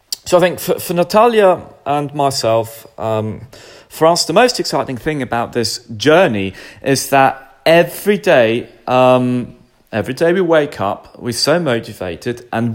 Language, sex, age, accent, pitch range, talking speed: English, male, 30-49, British, 120-145 Hz, 150 wpm